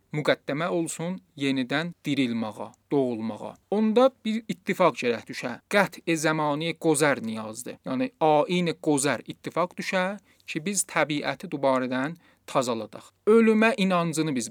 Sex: male